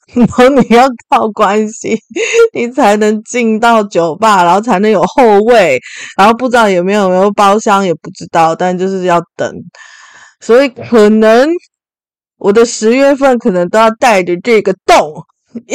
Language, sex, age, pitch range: Chinese, female, 20-39, 180-235 Hz